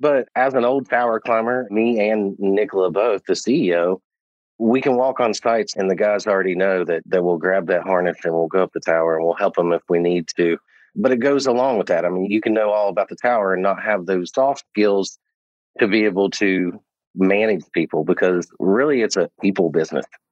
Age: 30-49